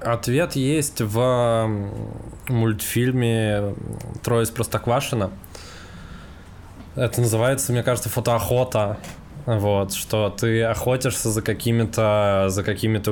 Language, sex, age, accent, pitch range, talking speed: Russian, male, 20-39, native, 95-115 Hz, 90 wpm